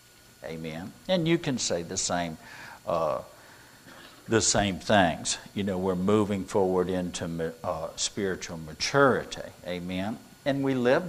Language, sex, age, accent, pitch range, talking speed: English, male, 60-79, American, 100-125 Hz, 135 wpm